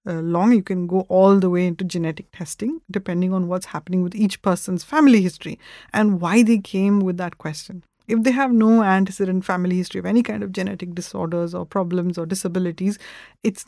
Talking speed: 200 wpm